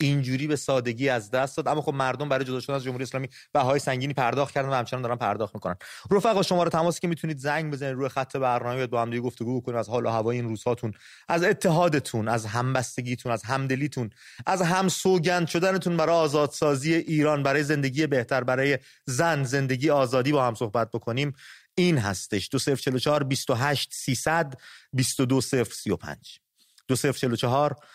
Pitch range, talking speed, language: 125-150 Hz, 165 wpm, English